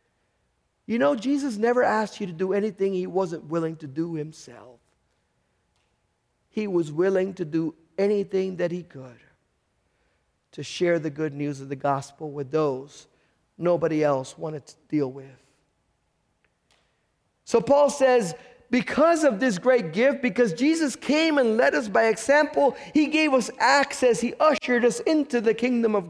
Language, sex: English, male